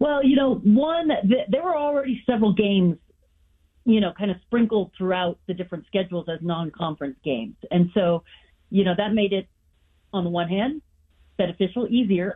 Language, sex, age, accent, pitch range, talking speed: English, female, 40-59, American, 175-220 Hz, 170 wpm